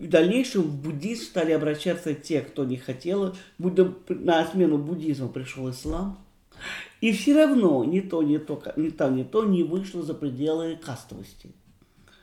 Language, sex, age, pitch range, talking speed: Russian, male, 50-69, 145-185 Hz, 145 wpm